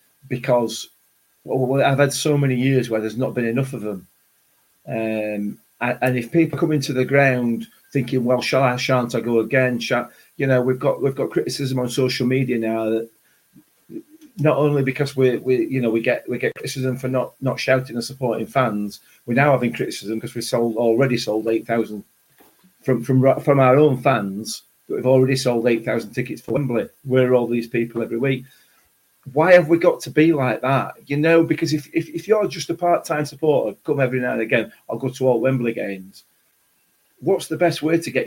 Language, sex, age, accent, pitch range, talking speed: English, male, 40-59, British, 115-140 Hz, 205 wpm